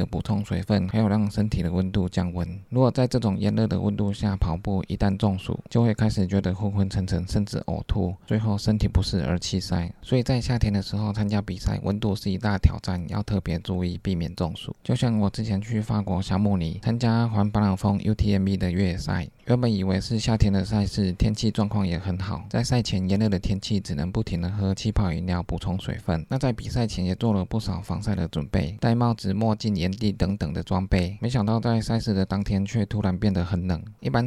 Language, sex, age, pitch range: Chinese, male, 20-39, 95-110 Hz